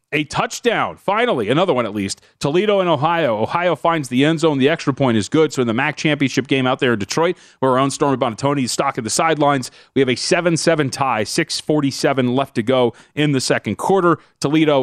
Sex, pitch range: male, 115-155 Hz